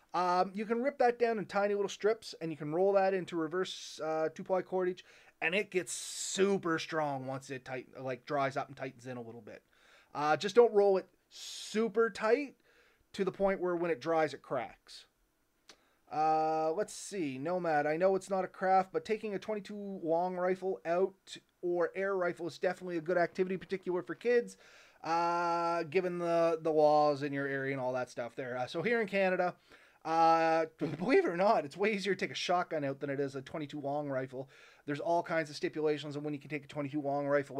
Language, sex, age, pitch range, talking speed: English, male, 30-49, 150-190 Hz, 210 wpm